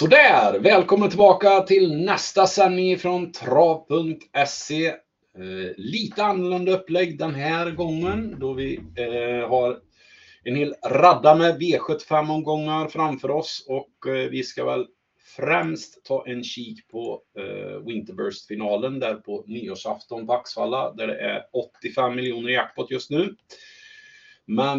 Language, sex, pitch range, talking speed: Swedish, male, 120-185 Hz, 130 wpm